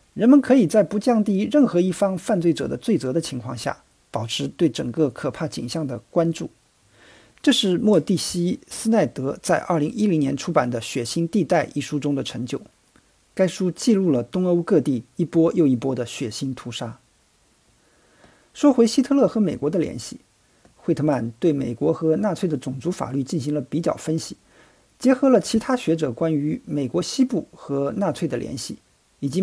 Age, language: 50-69, Chinese